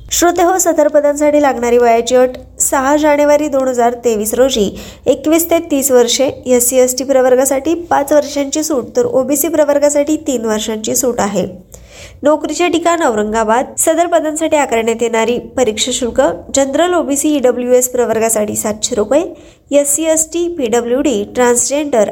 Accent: native